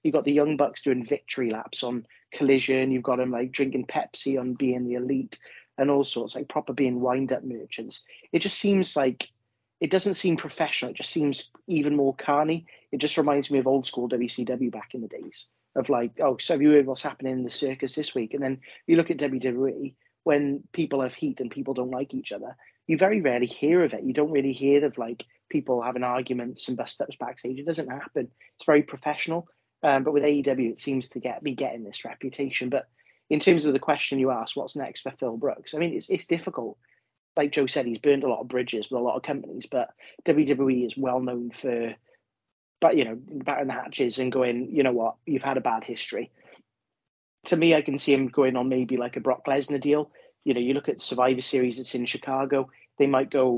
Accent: British